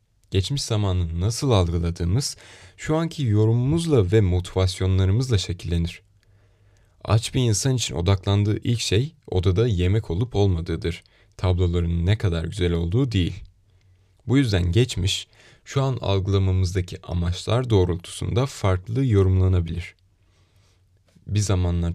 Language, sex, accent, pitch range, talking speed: Turkish, male, native, 90-110 Hz, 105 wpm